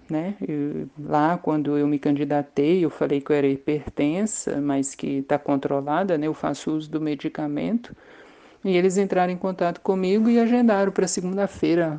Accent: Brazilian